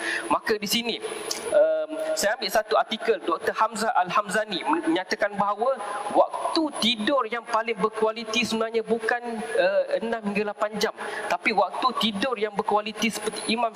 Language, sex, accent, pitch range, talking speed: English, male, Malaysian, 205-245 Hz, 140 wpm